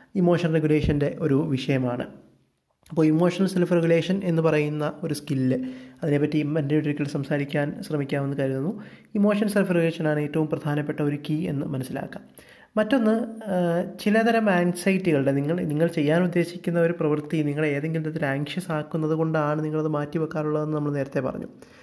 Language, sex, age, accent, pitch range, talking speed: Malayalam, male, 20-39, native, 140-175 Hz, 135 wpm